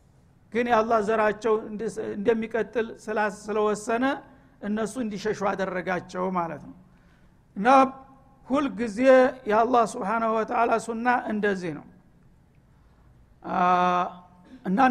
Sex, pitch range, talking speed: male, 200-230 Hz, 85 wpm